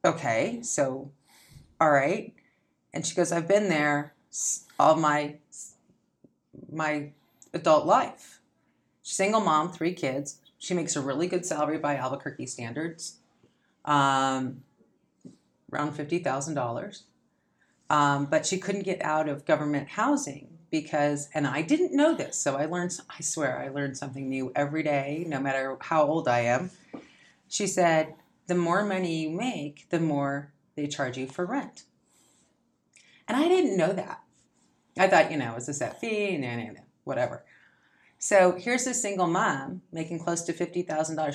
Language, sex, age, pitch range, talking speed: English, female, 40-59, 145-175 Hz, 150 wpm